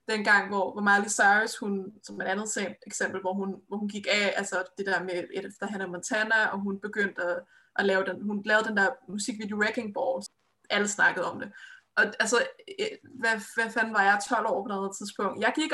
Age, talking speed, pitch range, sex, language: 20-39, 210 wpm, 195-235 Hz, female, Danish